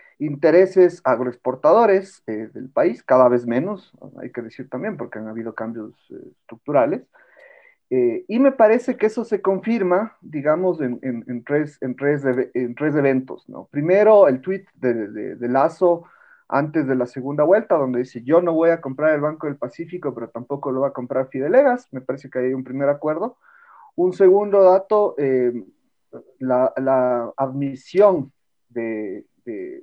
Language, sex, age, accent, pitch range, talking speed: Spanish, male, 40-59, Mexican, 130-190 Hz, 170 wpm